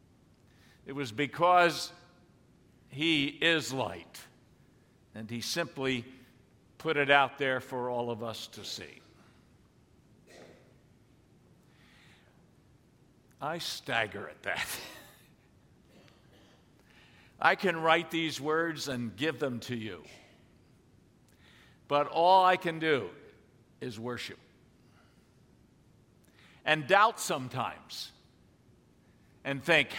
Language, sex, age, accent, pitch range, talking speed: English, male, 60-79, American, 130-175 Hz, 90 wpm